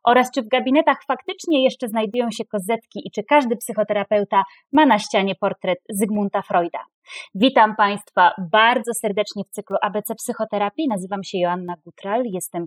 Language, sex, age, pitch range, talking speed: Polish, female, 20-39, 205-255 Hz, 150 wpm